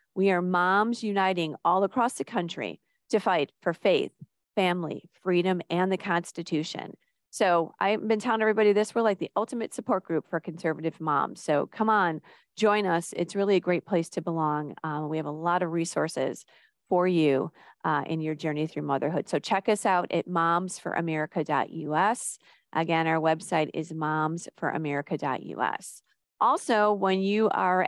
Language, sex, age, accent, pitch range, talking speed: English, female, 40-59, American, 165-210 Hz, 160 wpm